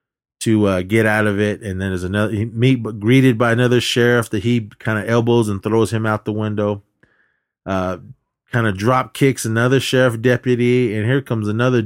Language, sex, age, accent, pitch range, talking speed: English, male, 30-49, American, 100-125 Hz, 195 wpm